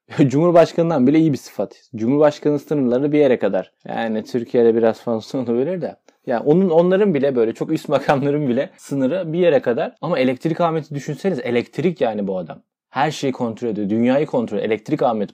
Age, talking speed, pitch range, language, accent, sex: 30-49, 185 wpm, 115-165 Hz, Turkish, native, male